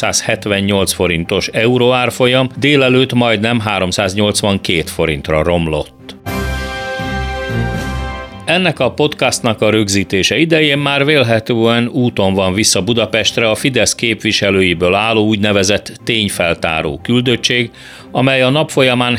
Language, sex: Hungarian, male